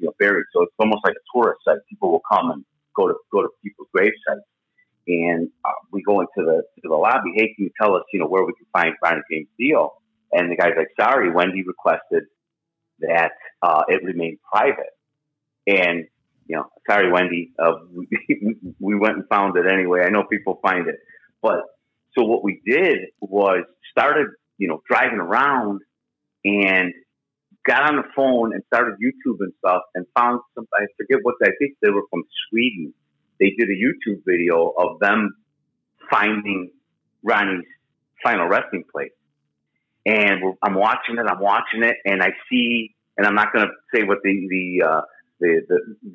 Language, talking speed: English, 185 wpm